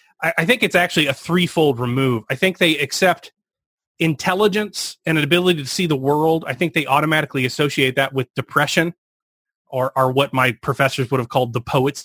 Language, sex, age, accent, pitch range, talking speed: English, male, 30-49, American, 125-160 Hz, 185 wpm